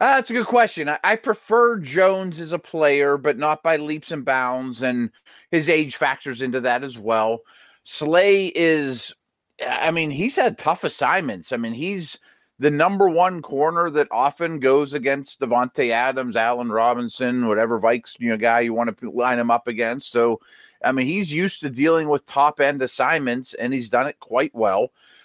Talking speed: 180 wpm